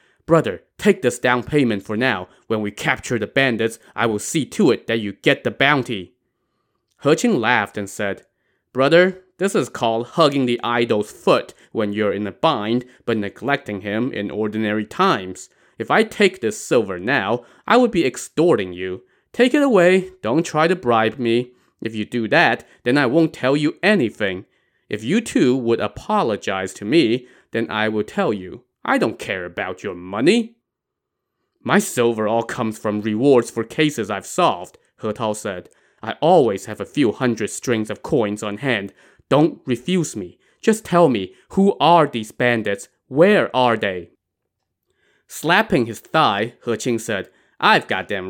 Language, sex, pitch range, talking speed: English, male, 100-155 Hz, 170 wpm